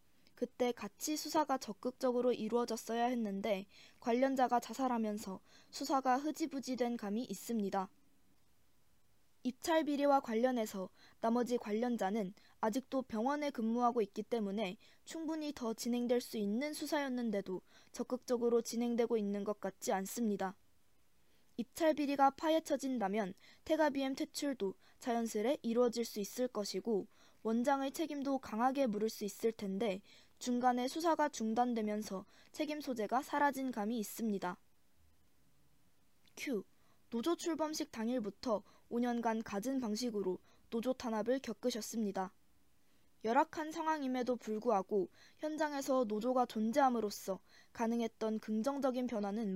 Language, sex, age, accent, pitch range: Korean, female, 20-39, native, 210-265 Hz